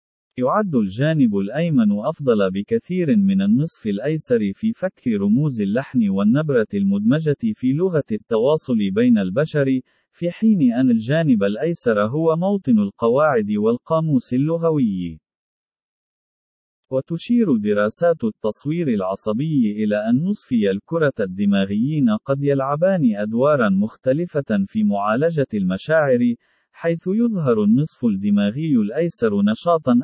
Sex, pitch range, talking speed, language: male, 130-210 Hz, 100 wpm, Arabic